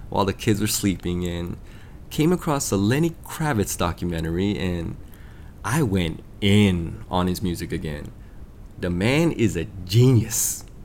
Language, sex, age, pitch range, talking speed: English, male, 20-39, 90-110 Hz, 140 wpm